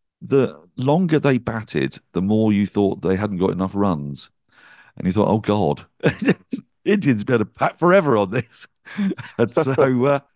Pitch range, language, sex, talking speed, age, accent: 85-110 Hz, English, male, 155 wpm, 50-69, British